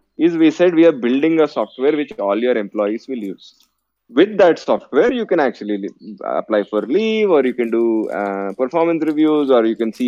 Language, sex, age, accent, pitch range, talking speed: English, male, 20-39, Indian, 115-170 Hz, 200 wpm